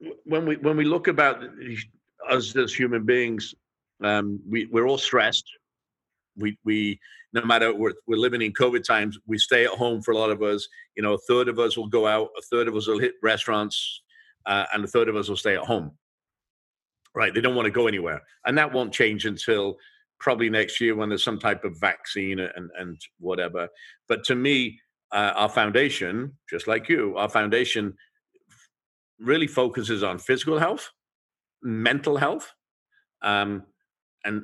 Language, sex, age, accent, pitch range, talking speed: English, male, 50-69, British, 100-125 Hz, 180 wpm